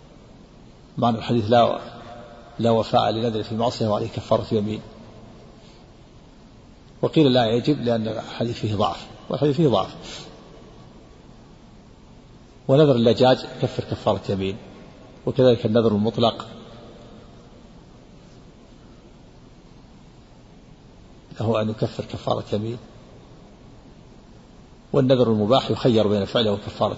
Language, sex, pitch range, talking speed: Arabic, male, 110-125 Hz, 85 wpm